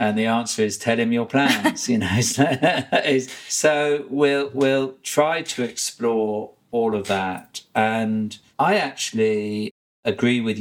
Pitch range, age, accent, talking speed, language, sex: 105-135 Hz, 50-69, British, 135 wpm, English, male